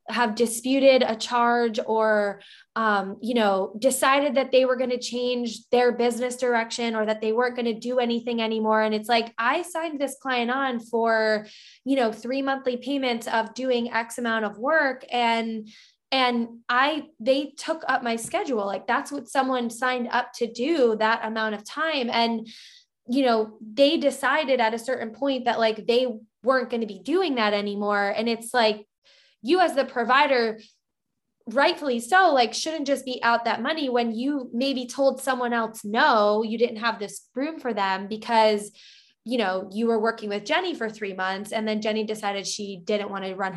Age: 10-29